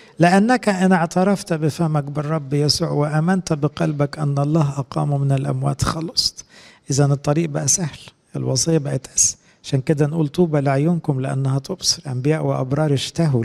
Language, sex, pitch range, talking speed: English, male, 130-165 Hz, 140 wpm